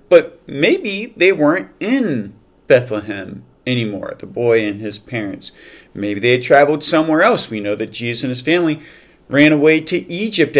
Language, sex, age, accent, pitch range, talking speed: English, male, 40-59, American, 130-170 Hz, 165 wpm